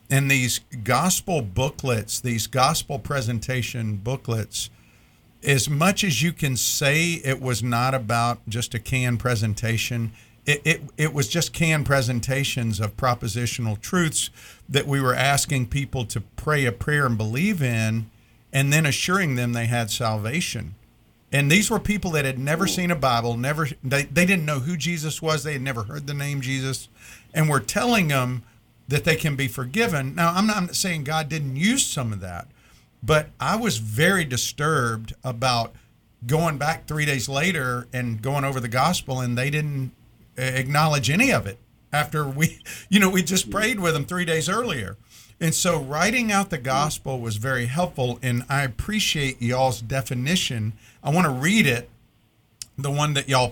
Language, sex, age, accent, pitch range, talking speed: English, male, 50-69, American, 120-155 Hz, 170 wpm